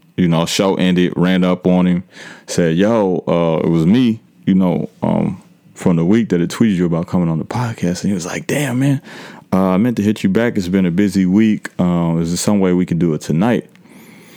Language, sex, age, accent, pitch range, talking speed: English, male, 30-49, American, 80-95 Hz, 240 wpm